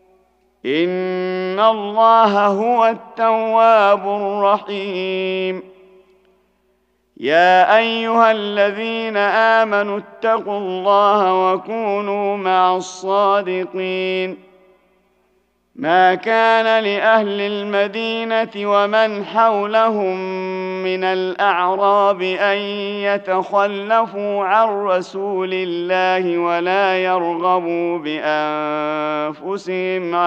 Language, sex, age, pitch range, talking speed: Arabic, male, 40-59, 185-205 Hz, 60 wpm